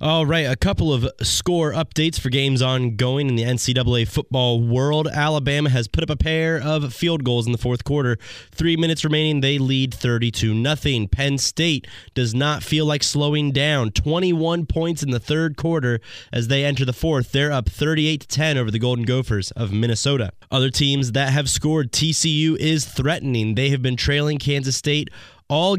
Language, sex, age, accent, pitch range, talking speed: English, male, 20-39, American, 125-155 Hz, 180 wpm